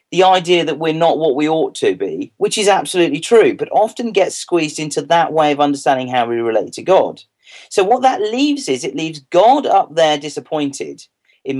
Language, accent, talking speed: English, British, 205 wpm